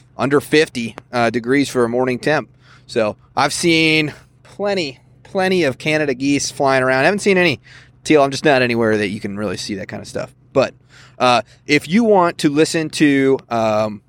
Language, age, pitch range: English, 30-49, 125-155 Hz